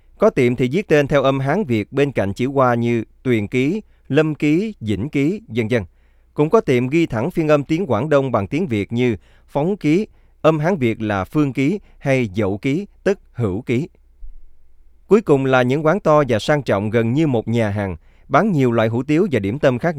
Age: 20-39